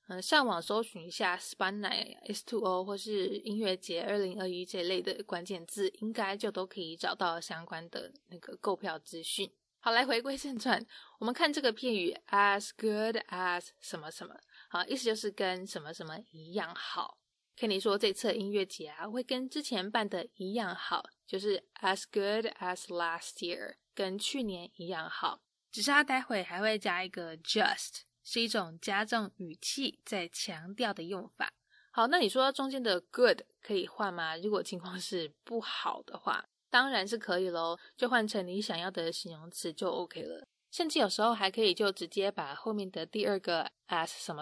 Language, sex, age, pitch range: English, female, 20-39, 180-230 Hz